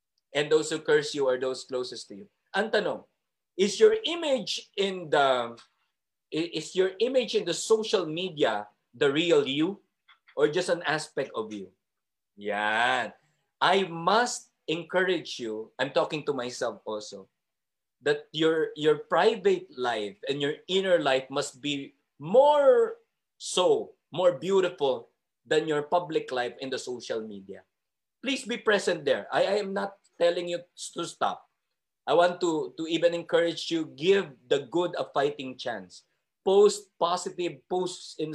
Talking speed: 145 wpm